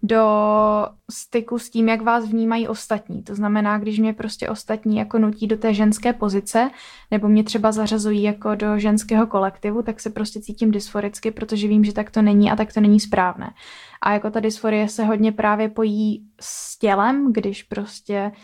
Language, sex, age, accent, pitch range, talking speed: Czech, female, 10-29, native, 205-220 Hz, 180 wpm